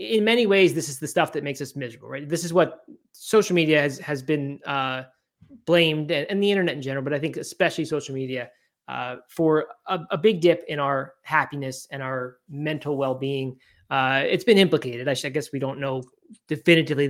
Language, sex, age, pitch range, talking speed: English, male, 20-39, 140-180 Hz, 205 wpm